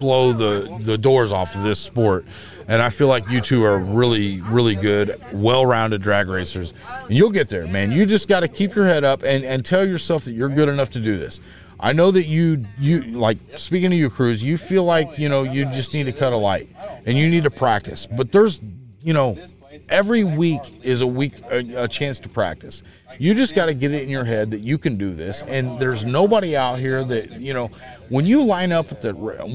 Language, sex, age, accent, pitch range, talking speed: English, male, 40-59, American, 110-155 Hz, 230 wpm